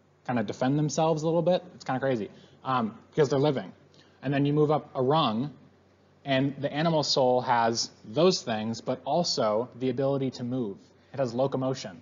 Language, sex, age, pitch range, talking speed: English, male, 20-39, 105-140 Hz, 195 wpm